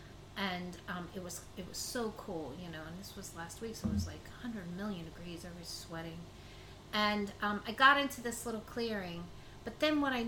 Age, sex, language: 30-49, female, English